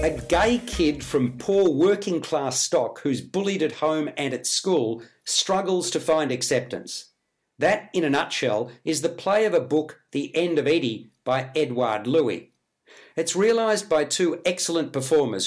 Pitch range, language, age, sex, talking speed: 140-175 Hz, English, 50-69, male, 160 wpm